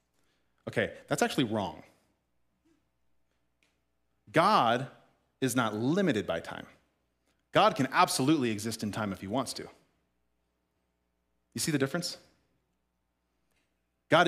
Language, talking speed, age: English, 105 wpm, 30-49